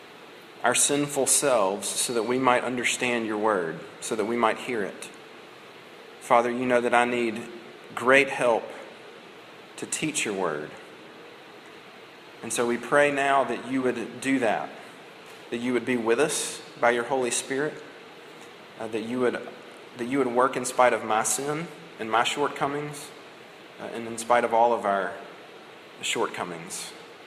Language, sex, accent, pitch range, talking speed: English, male, American, 120-150 Hz, 160 wpm